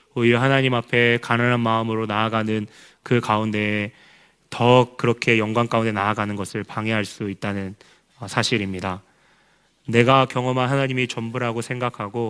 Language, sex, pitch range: Korean, male, 110-135 Hz